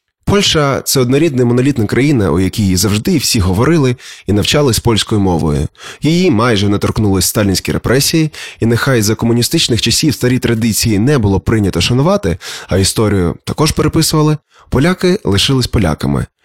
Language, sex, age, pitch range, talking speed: Ukrainian, male, 20-39, 100-135 Hz, 140 wpm